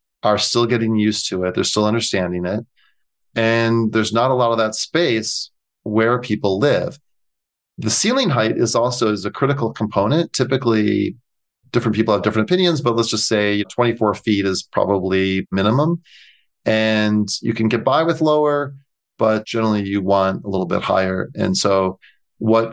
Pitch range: 100-115 Hz